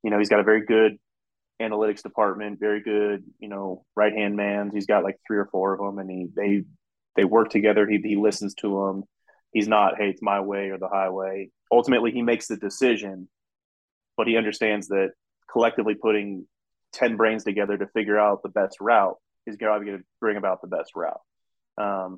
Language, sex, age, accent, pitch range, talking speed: English, male, 20-39, American, 100-115 Hz, 195 wpm